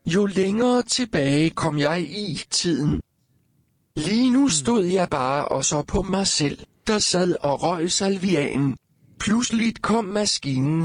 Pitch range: 145-200 Hz